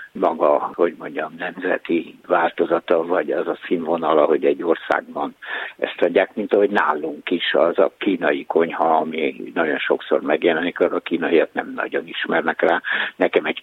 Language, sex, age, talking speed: Hungarian, male, 60-79, 150 wpm